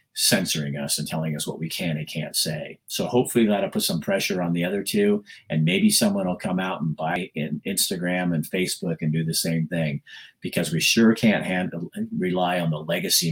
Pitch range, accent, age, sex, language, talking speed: 80-125 Hz, American, 50-69, male, English, 210 wpm